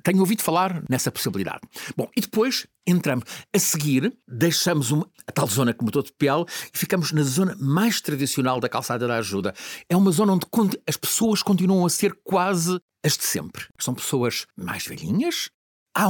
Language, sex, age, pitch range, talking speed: Portuguese, male, 60-79, 120-180 Hz, 180 wpm